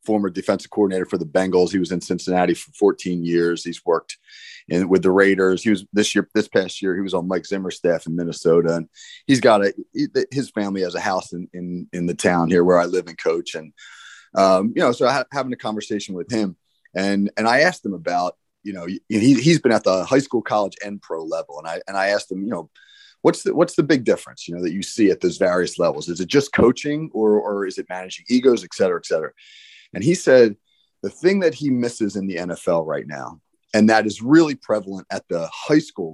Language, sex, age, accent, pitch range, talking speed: English, male, 30-49, American, 95-145 Hz, 240 wpm